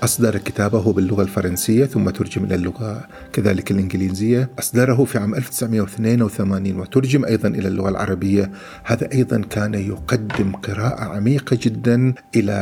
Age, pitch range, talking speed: 50-69, 105-125 Hz, 130 wpm